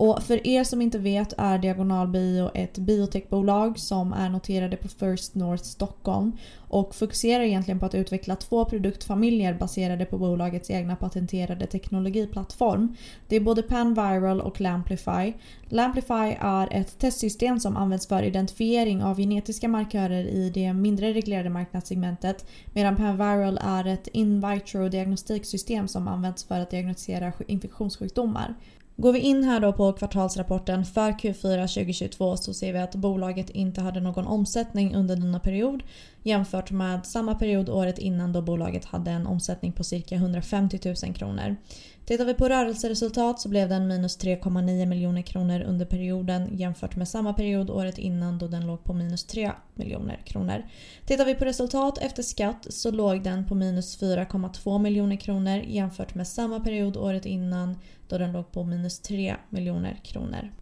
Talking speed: 155 wpm